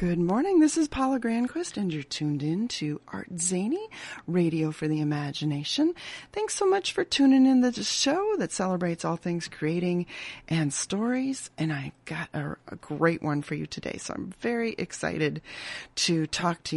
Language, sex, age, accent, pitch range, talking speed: English, female, 30-49, American, 150-235 Hz, 180 wpm